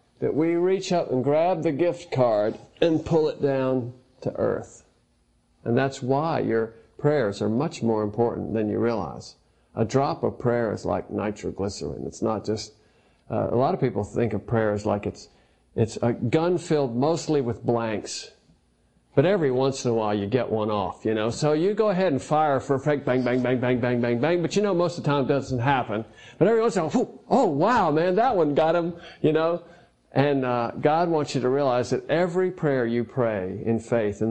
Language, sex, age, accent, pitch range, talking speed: English, male, 50-69, American, 110-135 Hz, 215 wpm